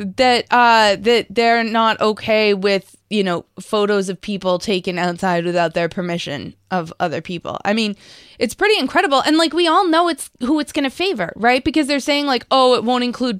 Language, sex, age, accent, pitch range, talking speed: English, female, 20-39, American, 190-235 Hz, 200 wpm